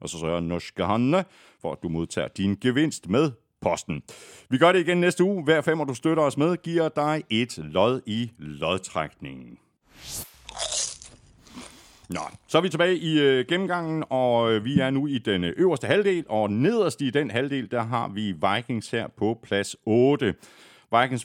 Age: 60-79